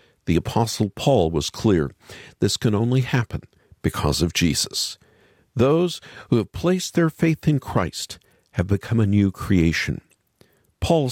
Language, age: English, 50-69